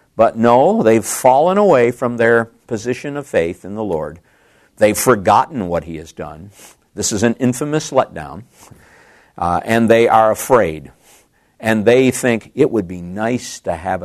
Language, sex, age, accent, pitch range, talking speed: English, male, 50-69, American, 105-150 Hz, 160 wpm